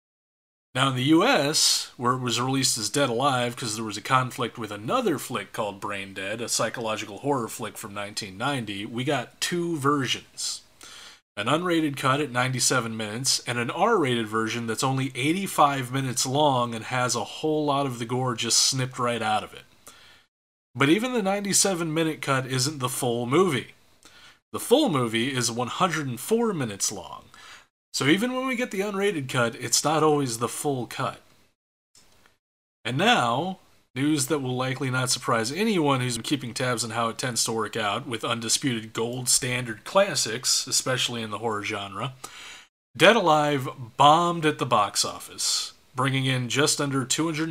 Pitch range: 115-145 Hz